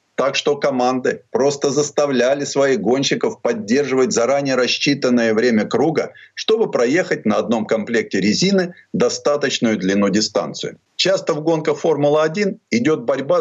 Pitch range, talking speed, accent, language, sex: 135-190 Hz, 120 wpm, native, Russian, male